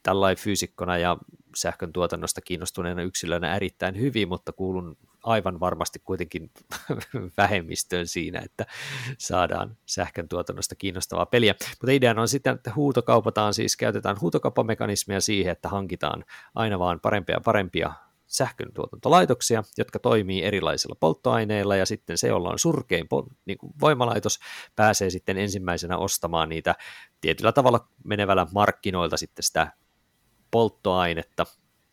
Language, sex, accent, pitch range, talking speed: Finnish, male, native, 90-110 Hz, 115 wpm